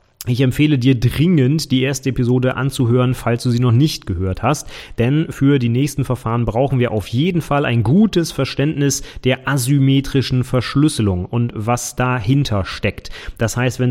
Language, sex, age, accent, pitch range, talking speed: German, male, 30-49, German, 110-135 Hz, 165 wpm